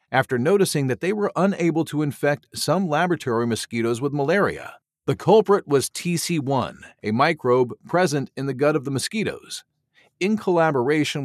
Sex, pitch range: male, 125-160 Hz